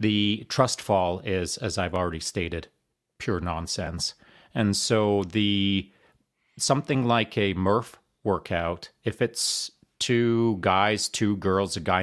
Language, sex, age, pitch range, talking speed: English, male, 40-59, 95-115 Hz, 130 wpm